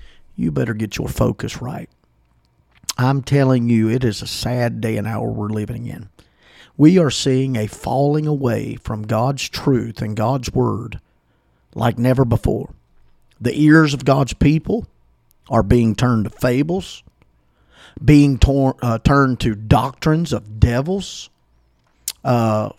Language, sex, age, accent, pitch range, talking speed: English, male, 50-69, American, 110-145 Hz, 135 wpm